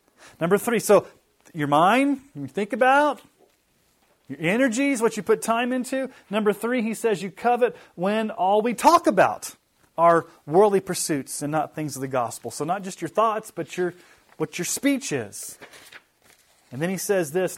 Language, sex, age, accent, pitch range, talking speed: English, male, 30-49, American, 140-195 Hz, 175 wpm